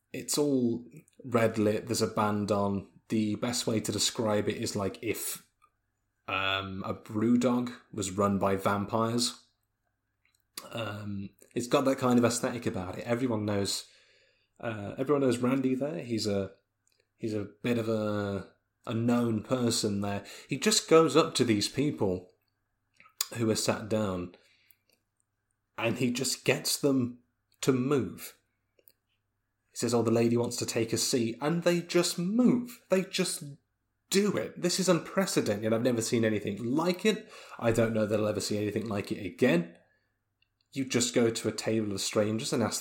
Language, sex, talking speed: English, male, 165 wpm